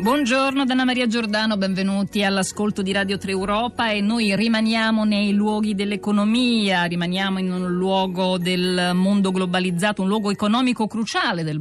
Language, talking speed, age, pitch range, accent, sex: Italian, 145 wpm, 50-69, 160-200 Hz, native, female